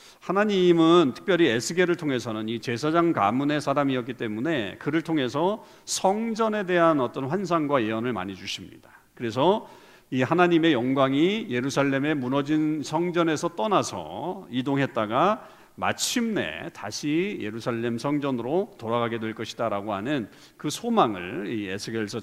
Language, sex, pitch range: English, male, 120-180 Hz